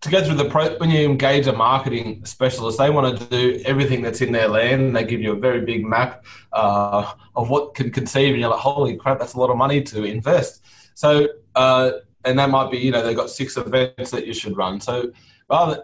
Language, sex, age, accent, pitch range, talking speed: English, male, 20-39, Australian, 115-135 Hz, 235 wpm